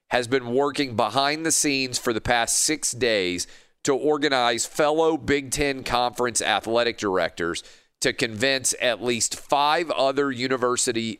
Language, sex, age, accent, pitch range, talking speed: English, male, 40-59, American, 115-140 Hz, 140 wpm